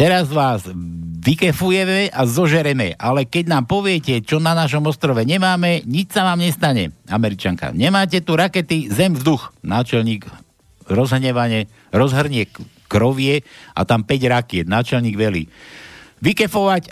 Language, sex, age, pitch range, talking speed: Slovak, male, 60-79, 110-170 Hz, 130 wpm